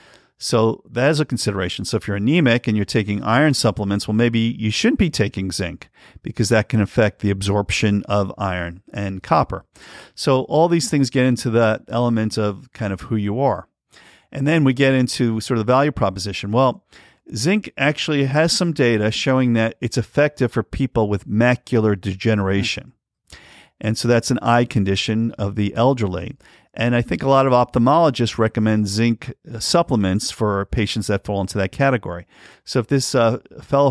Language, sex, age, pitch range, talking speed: English, male, 50-69, 105-130 Hz, 180 wpm